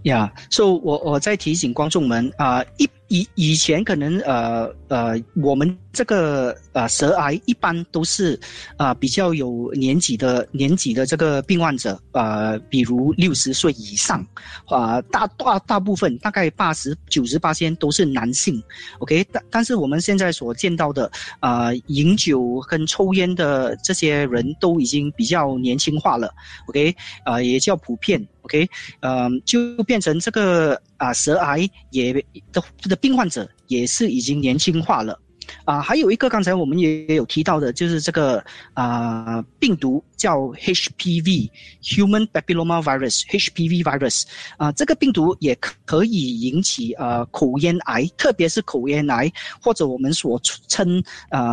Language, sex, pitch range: Chinese, male, 130-185 Hz